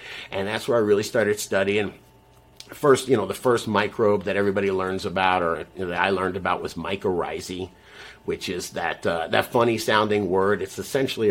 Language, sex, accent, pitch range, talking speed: English, male, American, 100-140 Hz, 180 wpm